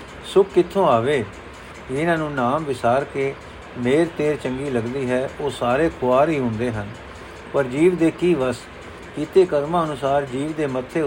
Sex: male